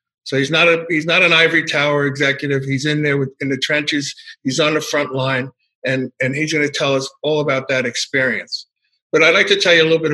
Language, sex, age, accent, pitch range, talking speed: English, male, 50-69, American, 130-150 Hz, 235 wpm